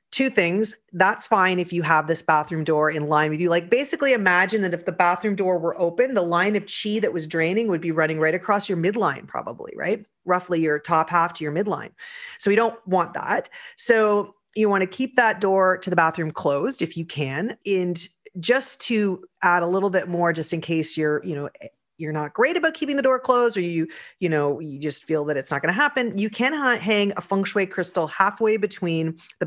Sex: female